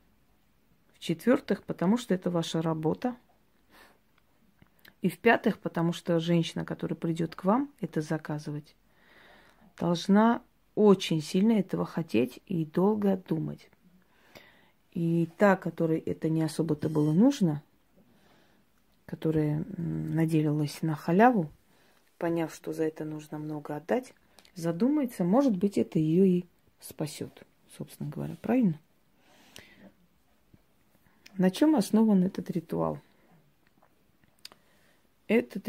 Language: Russian